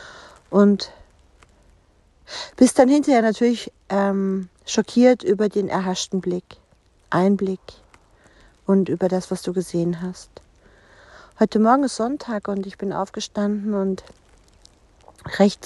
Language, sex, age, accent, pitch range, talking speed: German, female, 50-69, German, 180-220 Hz, 110 wpm